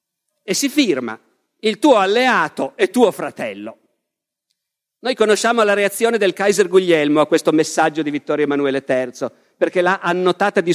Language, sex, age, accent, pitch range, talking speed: Italian, male, 50-69, native, 175-235 Hz, 150 wpm